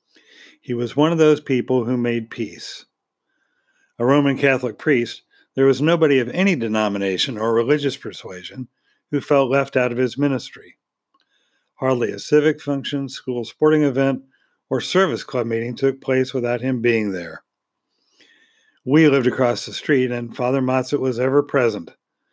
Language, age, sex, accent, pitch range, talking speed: English, 50-69, male, American, 125-145 Hz, 150 wpm